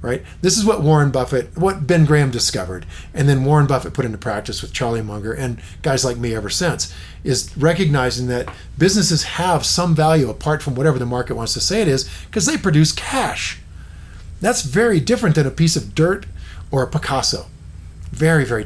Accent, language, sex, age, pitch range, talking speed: American, English, male, 40-59, 110-160 Hz, 195 wpm